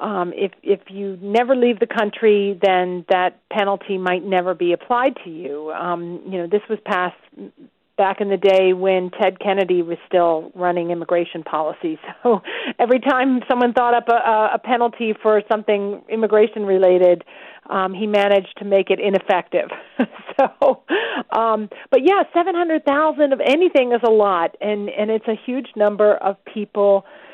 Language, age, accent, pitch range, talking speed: English, 40-59, American, 185-225 Hz, 165 wpm